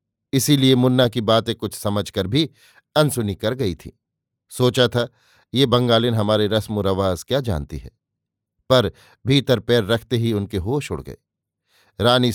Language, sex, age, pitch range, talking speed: Hindi, male, 50-69, 105-125 Hz, 150 wpm